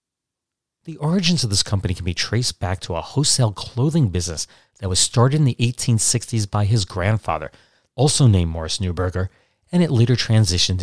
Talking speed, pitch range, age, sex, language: 170 wpm, 95-130 Hz, 40-59, male, English